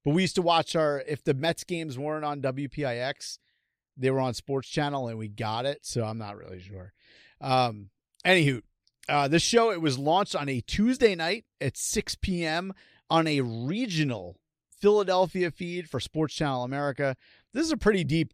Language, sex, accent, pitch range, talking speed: English, male, American, 130-170 Hz, 185 wpm